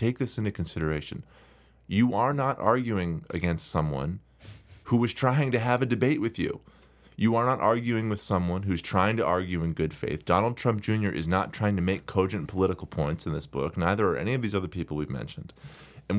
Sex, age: male, 30-49